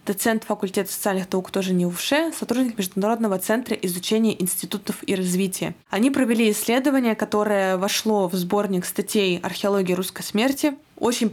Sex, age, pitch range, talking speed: female, 20-39, 190-230 Hz, 145 wpm